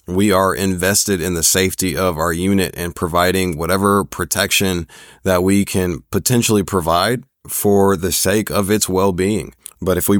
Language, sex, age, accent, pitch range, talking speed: English, male, 30-49, American, 85-95 Hz, 160 wpm